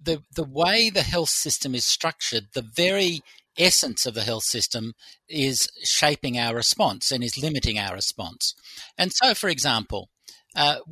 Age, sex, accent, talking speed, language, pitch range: 50-69, male, Australian, 160 wpm, English, 120-160 Hz